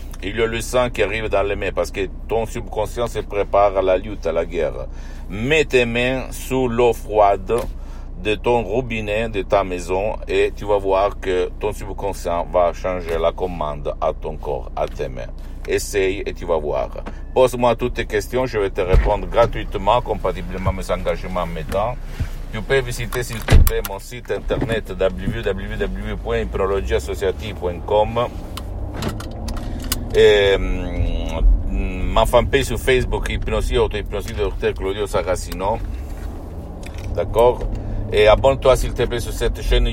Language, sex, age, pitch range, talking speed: Italian, male, 60-79, 90-115 Hz, 150 wpm